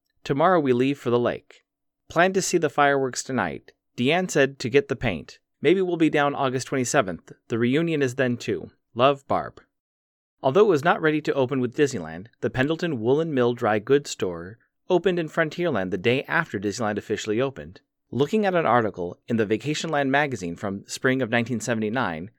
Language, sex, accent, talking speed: English, male, American, 180 wpm